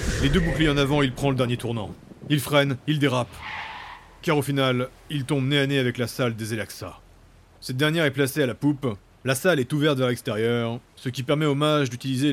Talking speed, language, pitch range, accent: 225 wpm, French, 115-155 Hz, French